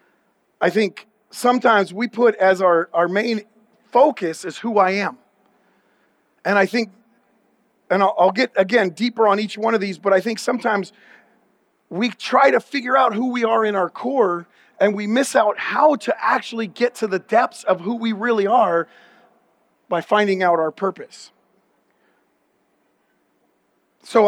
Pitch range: 195-235 Hz